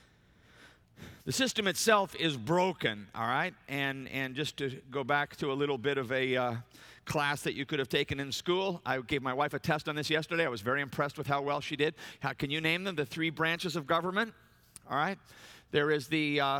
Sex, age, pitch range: male, 50-69, 135-170 Hz